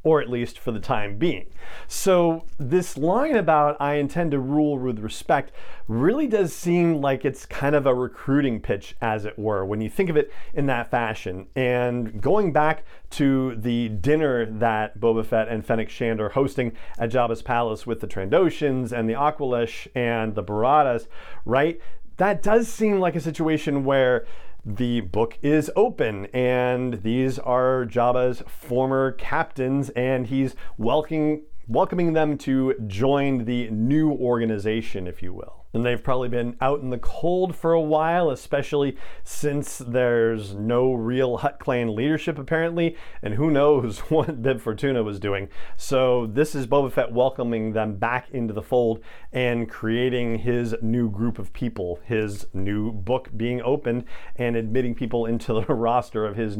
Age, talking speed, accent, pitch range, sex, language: 40-59, 165 wpm, American, 115-150 Hz, male, English